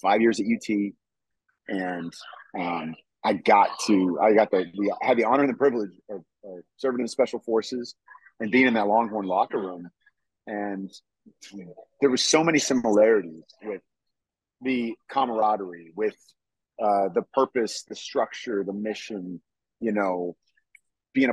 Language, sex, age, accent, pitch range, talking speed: English, male, 30-49, American, 95-125 Hz, 150 wpm